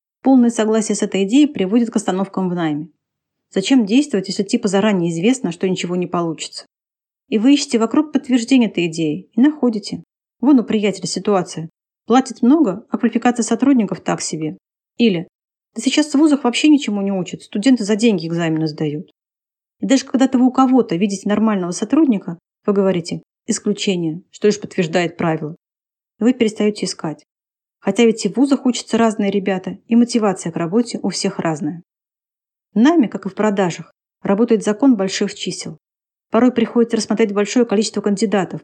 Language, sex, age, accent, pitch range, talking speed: Russian, female, 30-49, native, 185-240 Hz, 160 wpm